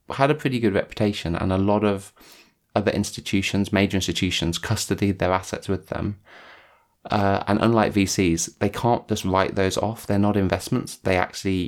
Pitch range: 90-110 Hz